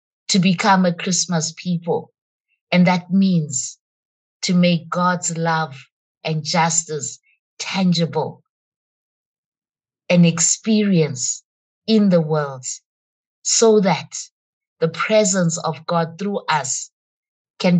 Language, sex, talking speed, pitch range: English, female, 100 wpm, 155-180 Hz